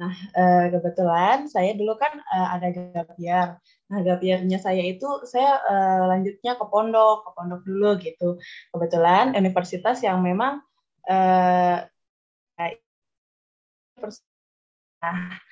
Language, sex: Indonesian, female